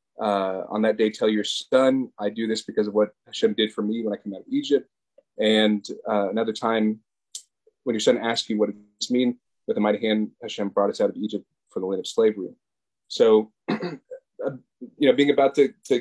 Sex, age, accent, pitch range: male, 30-49, American, 110-135 Hz